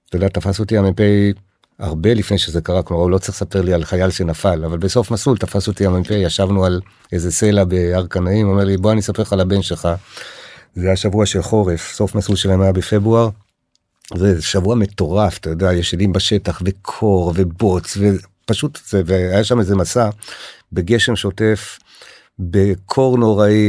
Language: Hebrew